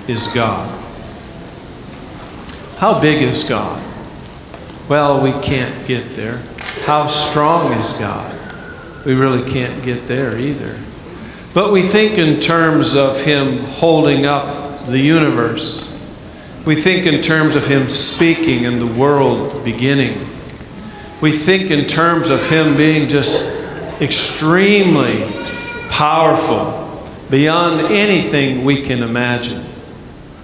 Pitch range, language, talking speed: 135-165 Hz, English, 115 wpm